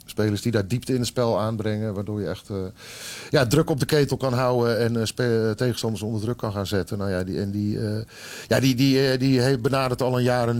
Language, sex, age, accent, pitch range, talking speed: Dutch, male, 50-69, Dutch, 110-130 Hz, 230 wpm